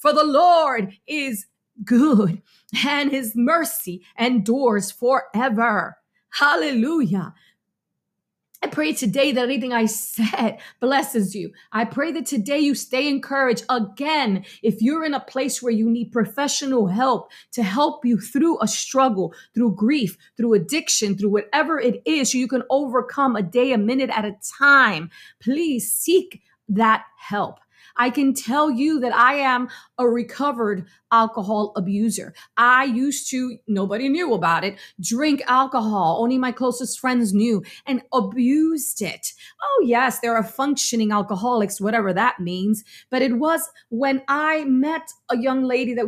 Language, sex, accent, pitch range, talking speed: English, female, American, 220-270 Hz, 150 wpm